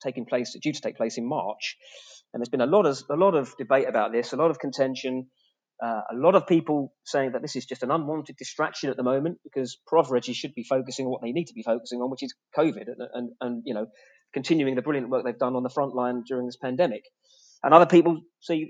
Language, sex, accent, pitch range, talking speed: English, male, British, 130-180 Hz, 250 wpm